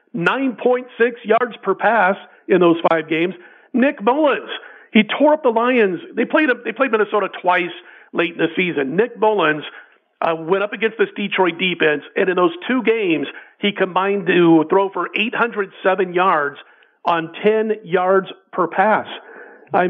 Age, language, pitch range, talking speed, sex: 50-69, English, 170-210 Hz, 155 wpm, male